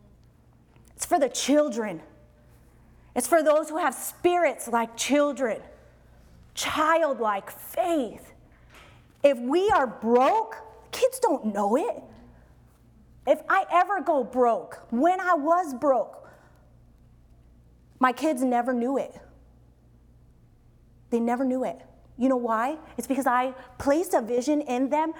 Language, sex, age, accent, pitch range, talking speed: English, female, 30-49, American, 235-320 Hz, 120 wpm